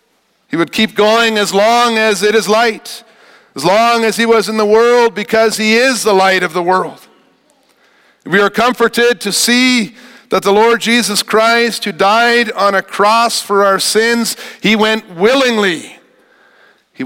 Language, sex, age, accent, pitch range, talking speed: English, male, 50-69, American, 145-220 Hz, 170 wpm